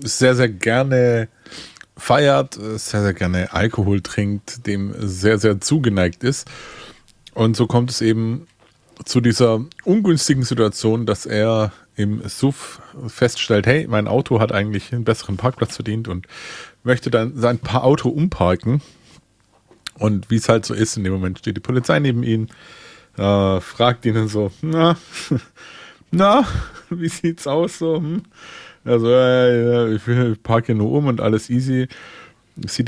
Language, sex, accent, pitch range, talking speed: German, male, German, 100-125 Hz, 150 wpm